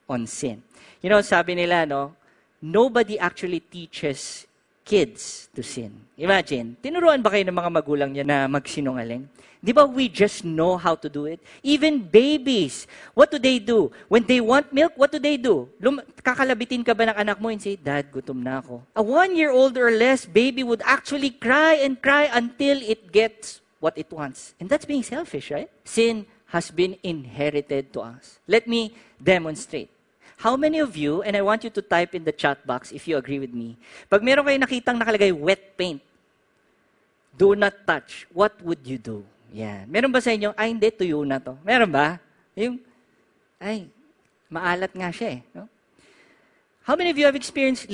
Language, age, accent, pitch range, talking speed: English, 40-59, Filipino, 150-240 Hz, 185 wpm